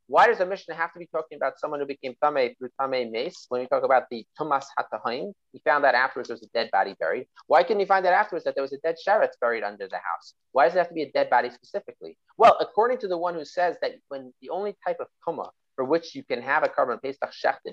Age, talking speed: 30-49, 275 wpm